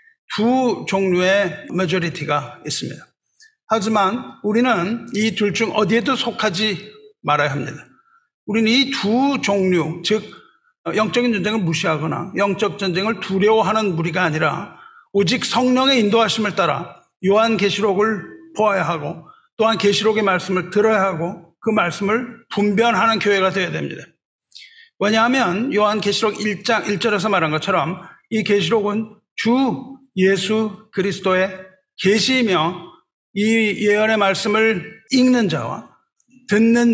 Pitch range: 190-230 Hz